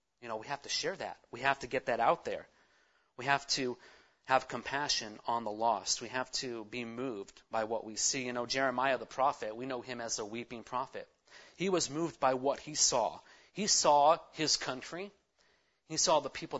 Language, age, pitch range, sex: English, 30-49, 120-140 Hz, male